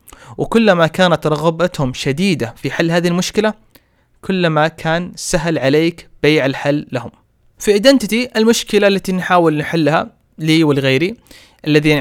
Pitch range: 145-190 Hz